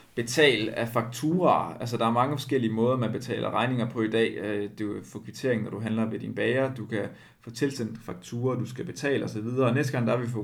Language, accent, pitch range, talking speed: Danish, native, 110-125 Hz, 225 wpm